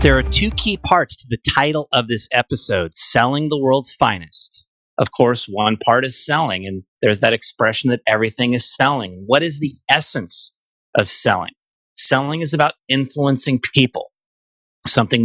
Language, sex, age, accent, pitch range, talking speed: English, male, 30-49, American, 110-135 Hz, 160 wpm